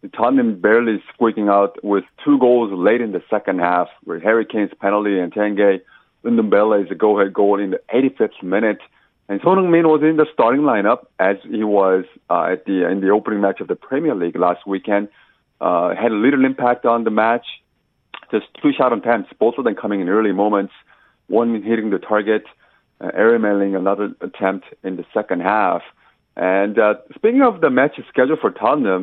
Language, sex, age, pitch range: Korean, male, 30-49, 95-115 Hz